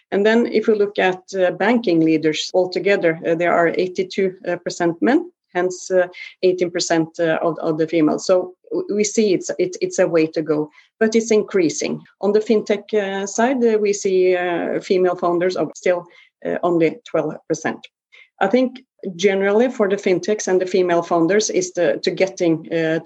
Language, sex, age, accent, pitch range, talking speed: English, female, 30-49, Swedish, 170-200 Hz, 175 wpm